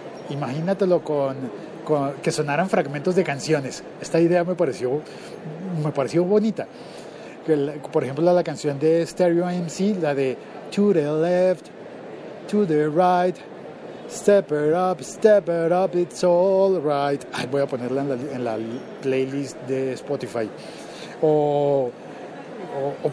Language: Spanish